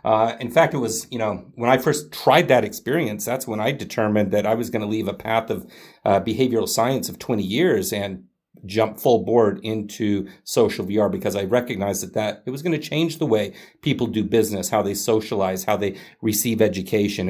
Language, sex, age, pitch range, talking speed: English, male, 40-59, 105-130 Hz, 210 wpm